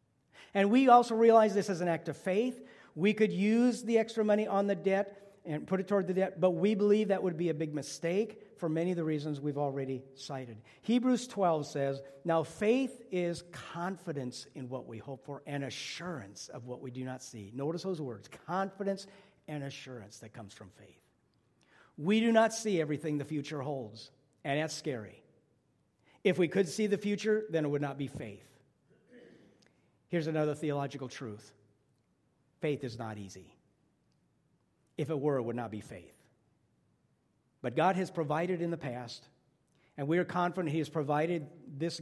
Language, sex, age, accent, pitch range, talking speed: English, male, 50-69, American, 135-185 Hz, 180 wpm